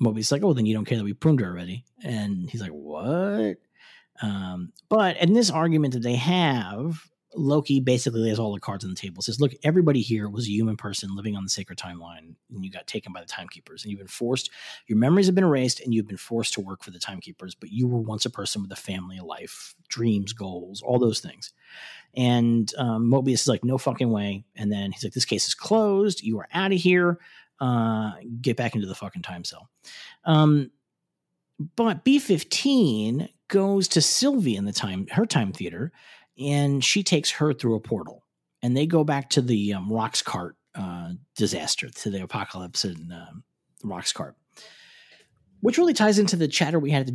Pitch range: 105-155 Hz